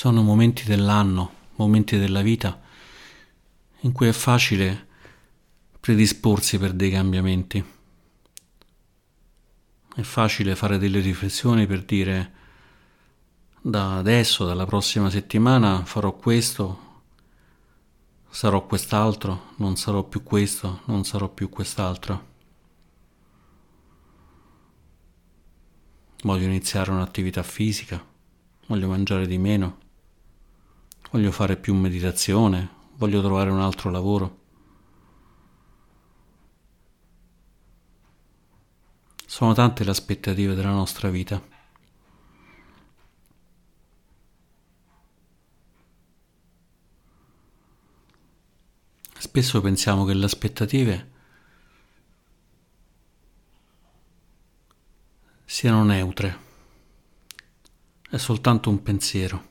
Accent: native